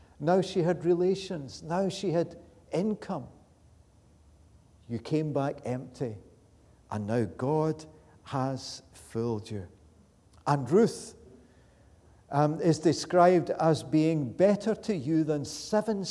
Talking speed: 110 wpm